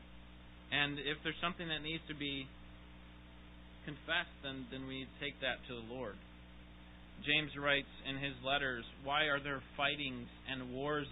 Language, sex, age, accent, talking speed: English, male, 30-49, American, 150 wpm